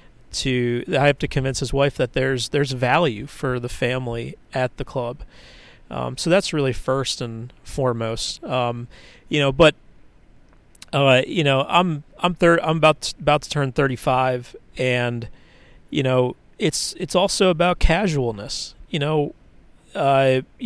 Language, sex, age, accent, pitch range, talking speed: English, male, 40-59, American, 125-155 Hz, 150 wpm